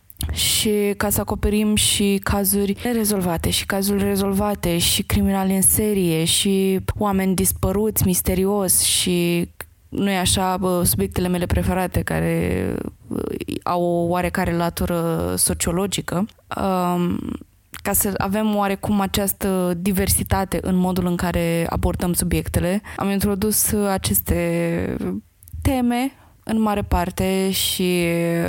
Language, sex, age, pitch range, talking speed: Romanian, female, 20-39, 170-200 Hz, 105 wpm